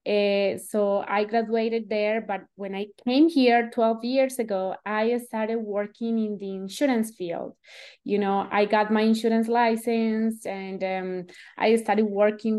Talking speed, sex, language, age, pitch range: 155 wpm, female, English, 20-39, 225-270 Hz